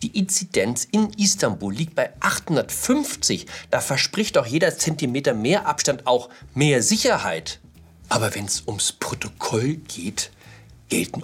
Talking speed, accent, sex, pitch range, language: 130 wpm, German, male, 90-140 Hz, German